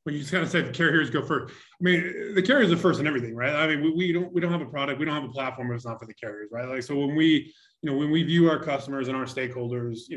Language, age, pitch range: English, 20-39, 125-155 Hz